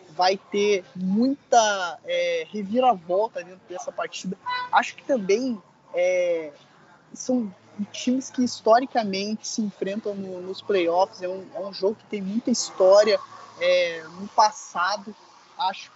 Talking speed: 130 wpm